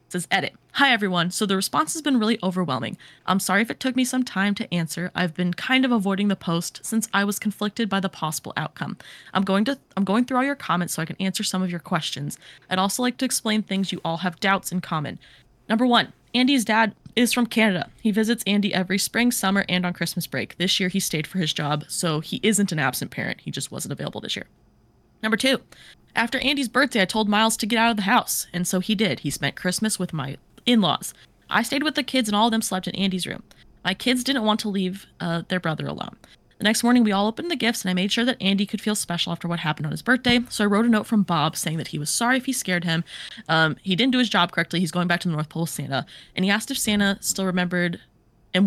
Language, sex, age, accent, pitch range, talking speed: English, female, 20-39, American, 175-230 Hz, 260 wpm